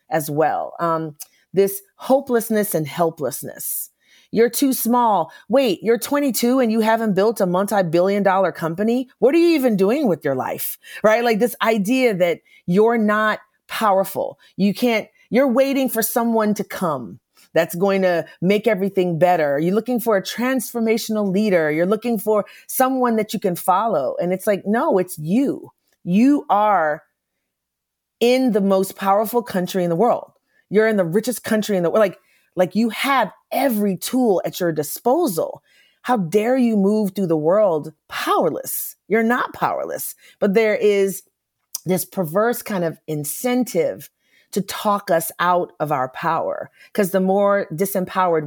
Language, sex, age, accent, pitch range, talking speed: English, female, 40-59, American, 180-235 Hz, 160 wpm